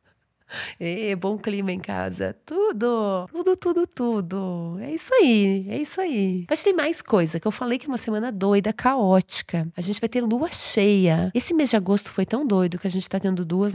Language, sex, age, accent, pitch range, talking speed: Portuguese, female, 30-49, Brazilian, 185-230 Hz, 205 wpm